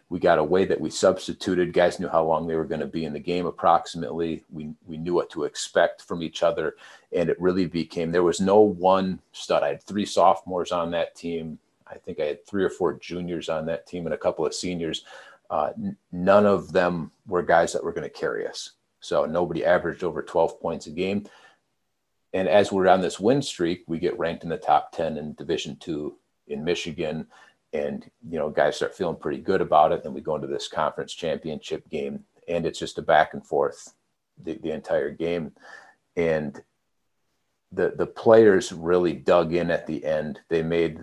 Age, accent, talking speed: 40-59, American, 210 wpm